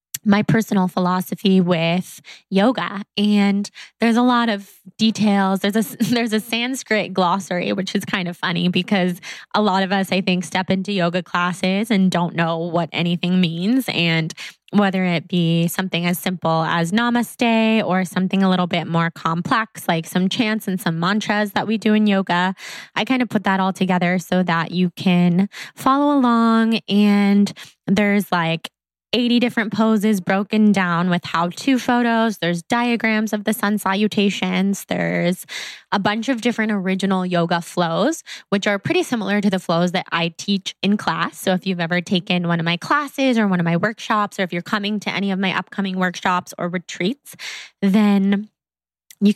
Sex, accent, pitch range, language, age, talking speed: female, American, 180-220 Hz, English, 20-39, 175 wpm